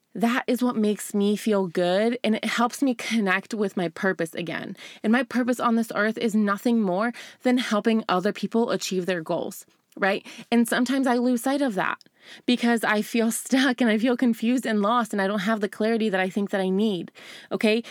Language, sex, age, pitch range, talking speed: English, female, 20-39, 215-260 Hz, 210 wpm